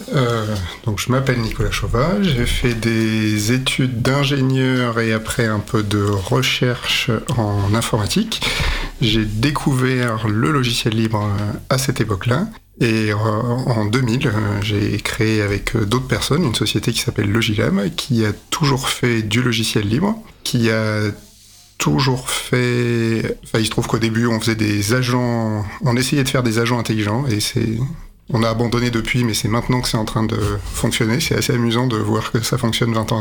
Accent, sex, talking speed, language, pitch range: French, male, 170 wpm, French, 110-125 Hz